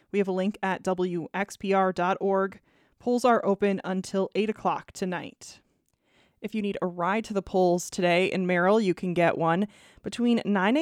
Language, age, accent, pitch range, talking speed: English, 20-39, American, 175-205 Hz, 165 wpm